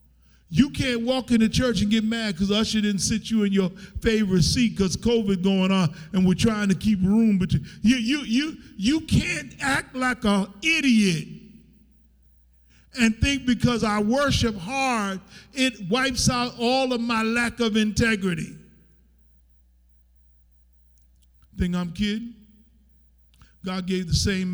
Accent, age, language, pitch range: American, 50-69, English, 150-220 Hz